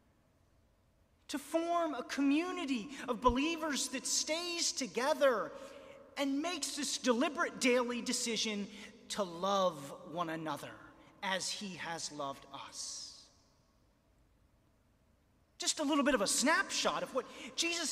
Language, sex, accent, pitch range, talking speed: English, male, American, 225-295 Hz, 115 wpm